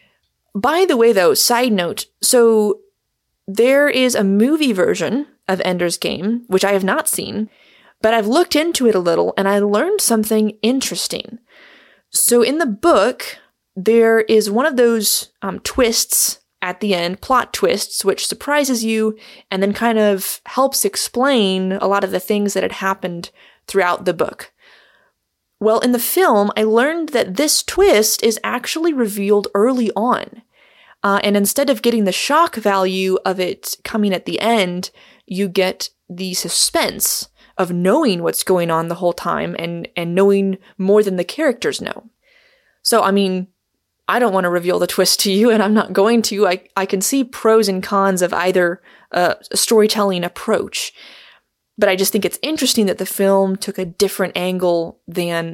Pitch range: 190-240 Hz